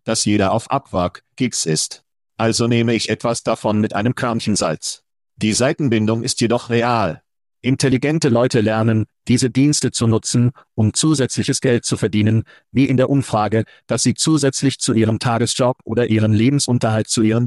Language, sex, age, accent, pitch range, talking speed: German, male, 50-69, German, 110-130 Hz, 160 wpm